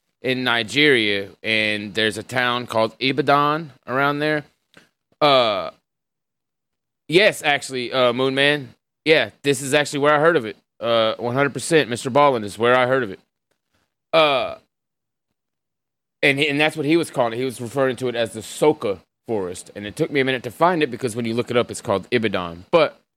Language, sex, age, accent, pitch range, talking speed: English, male, 30-49, American, 125-165 Hz, 185 wpm